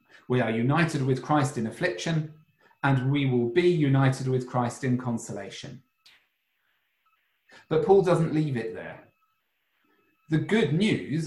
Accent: British